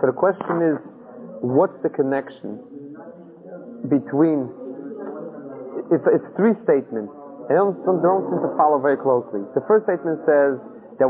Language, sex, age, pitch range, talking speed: English, male, 30-49, 135-180 Hz, 140 wpm